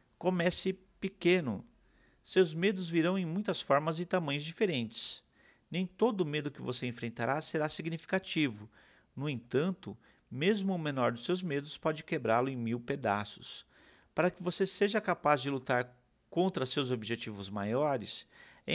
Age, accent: 50-69, Brazilian